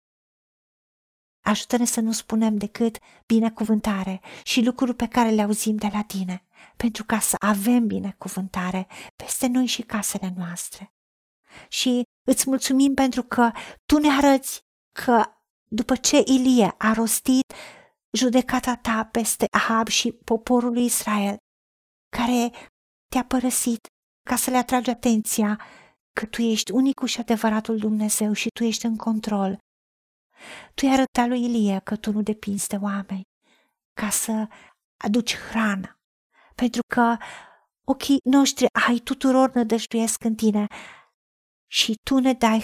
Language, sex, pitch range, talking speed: Romanian, female, 215-255 Hz, 130 wpm